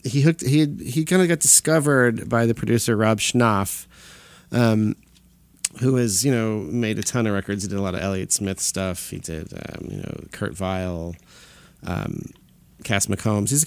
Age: 40-59